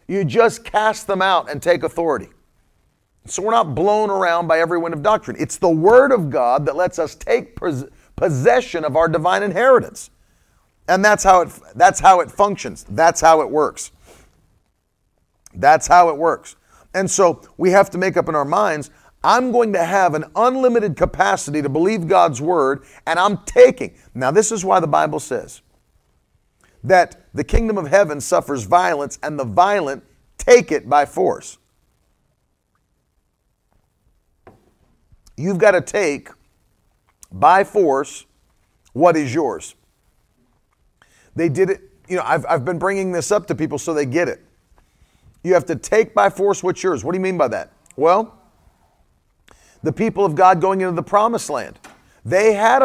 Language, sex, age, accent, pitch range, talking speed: English, male, 40-59, American, 155-200 Hz, 160 wpm